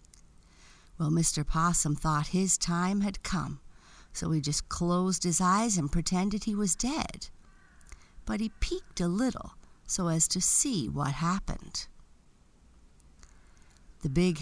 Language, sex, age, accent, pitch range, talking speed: English, female, 50-69, American, 140-185 Hz, 135 wpm